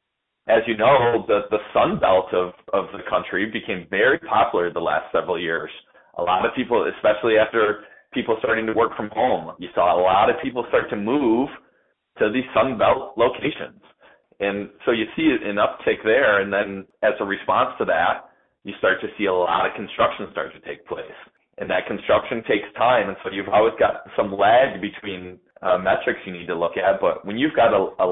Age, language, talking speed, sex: 30-49, English, 205 wpm, male